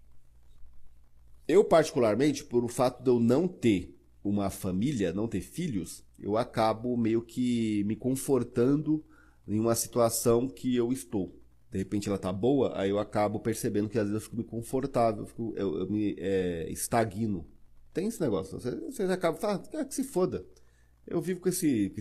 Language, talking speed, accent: Portuguese, 175 wpm, Brazilian